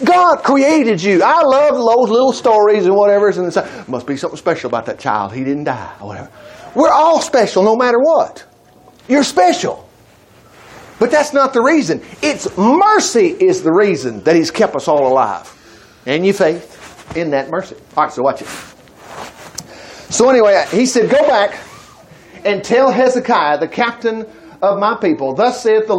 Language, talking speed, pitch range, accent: English, 170 wpm, 175-260 Hz, American